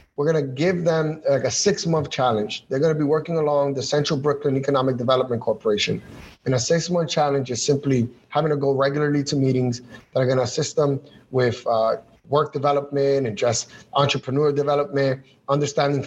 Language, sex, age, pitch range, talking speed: English, male, 30-49, 135-165 Hz, 175 wpm